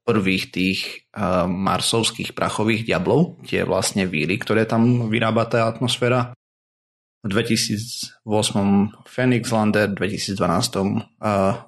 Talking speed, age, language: 100 wpm, 30-49, Slovak